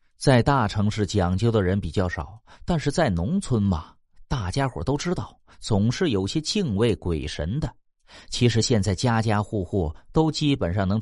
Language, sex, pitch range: Chinese, male, 90-135 Hz